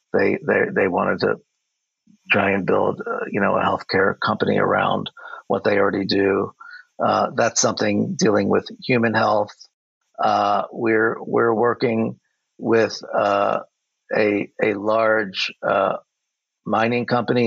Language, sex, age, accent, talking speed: English, male, 50-69, American, 130 wpm